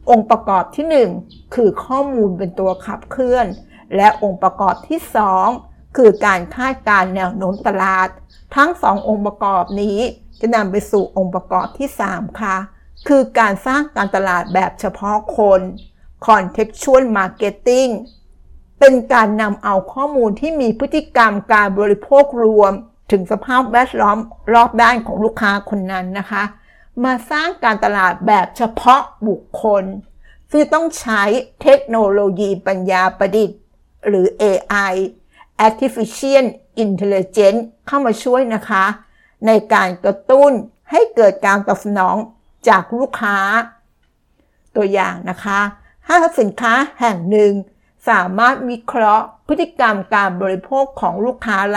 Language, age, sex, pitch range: Thai, 60-79, female, 200-250 Hz